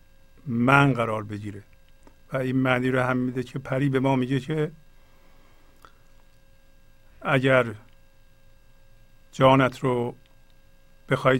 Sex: male